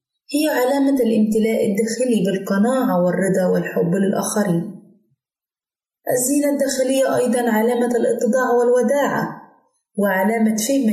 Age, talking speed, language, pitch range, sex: 20-39, 90 wpm, Arabic, 185-240 Hz, female